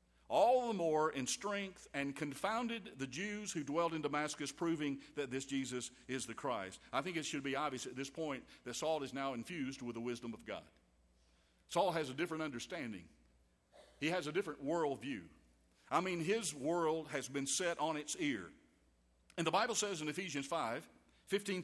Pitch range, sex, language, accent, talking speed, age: 120-160 Hz, male, English, American, 185 wpm, 50-69